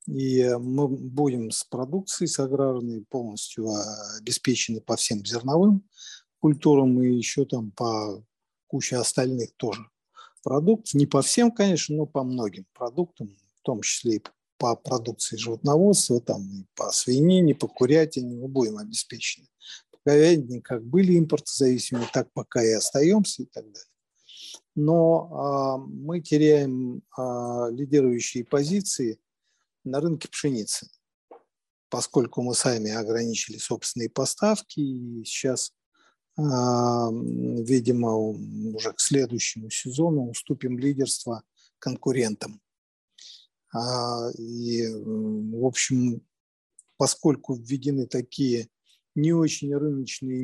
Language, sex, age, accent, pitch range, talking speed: Russian, male, 50-69, native, 115-145 Hz, 110 wpm